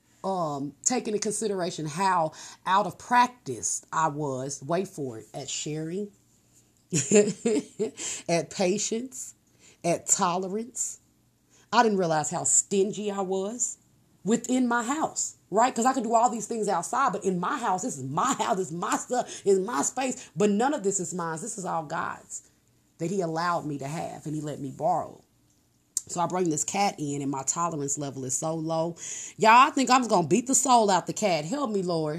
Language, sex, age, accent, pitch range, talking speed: English, female, 30-49, American, 165-245 Hz, 190 wpm